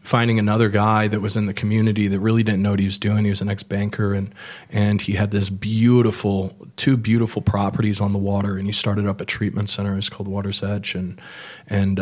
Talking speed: 230 wpm